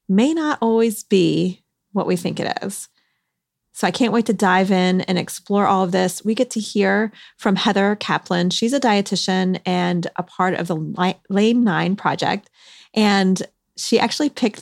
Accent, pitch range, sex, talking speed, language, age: American, 180-230 Hz, female, 175 wpm, English, 30-49